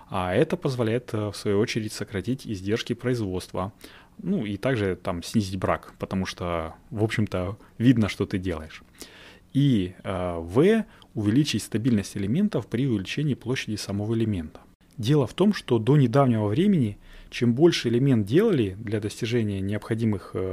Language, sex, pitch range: Russian, male, 100-135 Hz